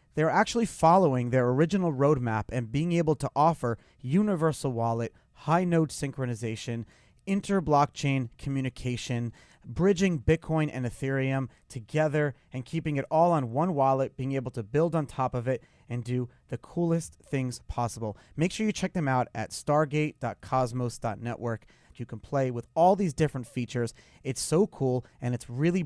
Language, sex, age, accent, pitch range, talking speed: English, male, 30-49, American, 120-155 Hz, 150 wpm